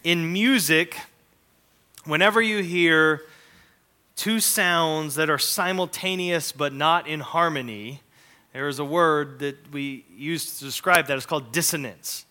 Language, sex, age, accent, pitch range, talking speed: English, male, 30-49, American, 140-185 Hz, 130 wpm